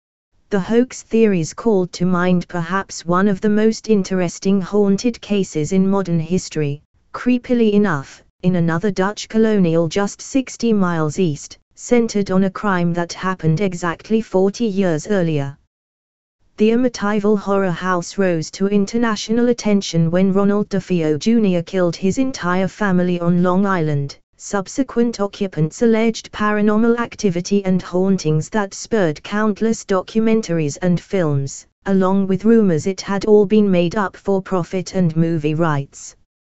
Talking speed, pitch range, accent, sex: 135 wpm, 170-210 Hz, British, female